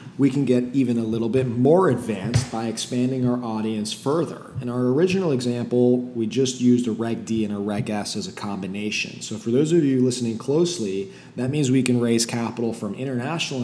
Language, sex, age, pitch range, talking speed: English, male, 20-39, 110-125 Hz, 200 wpm